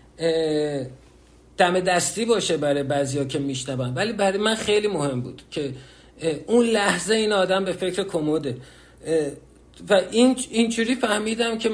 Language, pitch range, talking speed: Persian, 150-220 Hz, 135 wpm